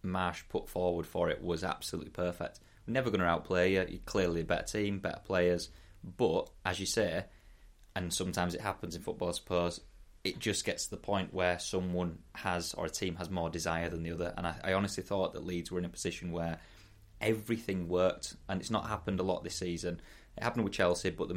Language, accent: English, British